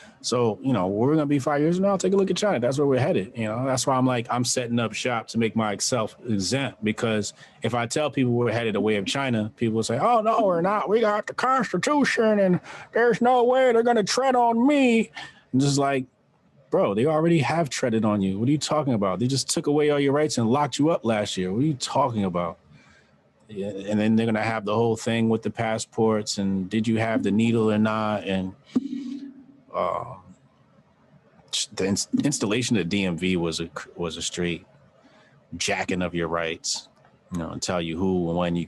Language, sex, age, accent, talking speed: English, male, 30-49, American, 220 wpm